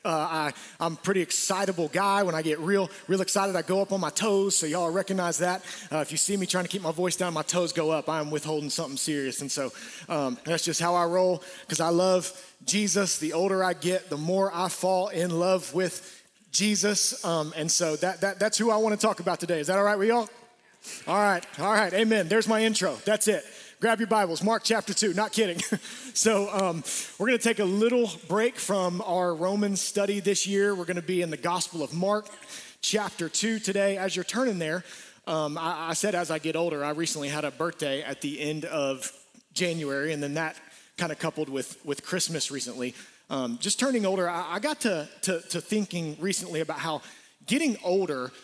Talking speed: 220 wpm